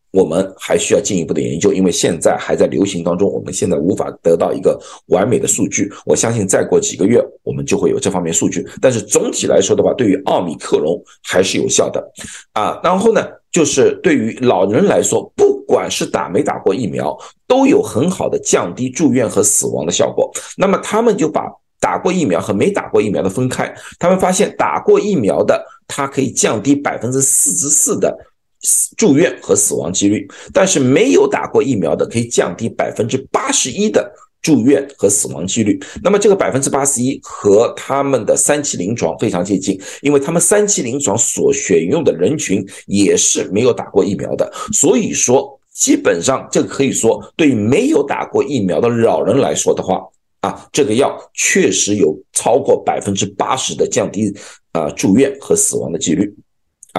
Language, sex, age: Chinese, male, 50-69